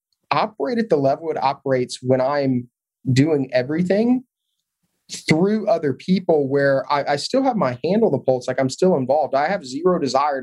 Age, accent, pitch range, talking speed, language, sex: 30-49, American, 130-150 Hz, 175 wpm, English, male